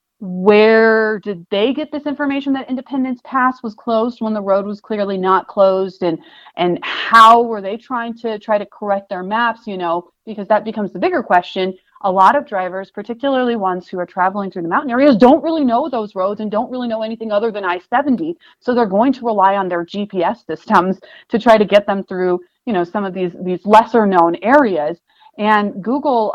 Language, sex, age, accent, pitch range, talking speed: English, female, 30-49, American, 185-225 Hz, 205 wpm